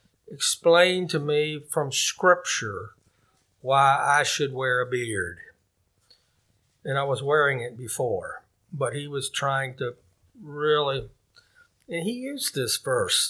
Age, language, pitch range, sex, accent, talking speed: 50-69, English, 135-185 Hz, male, American, 125 wpm